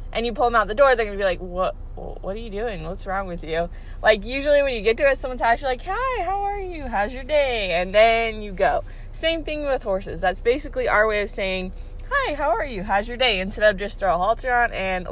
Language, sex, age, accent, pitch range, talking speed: English, female, 20-39, American, 195-255 Hz, 265 wpm